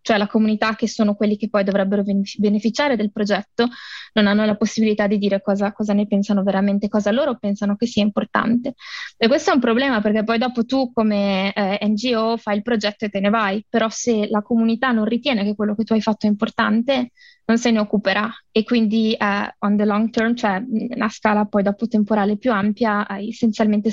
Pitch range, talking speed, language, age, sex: 205-230 Hz, 210 wpm, Italian, 20-39, female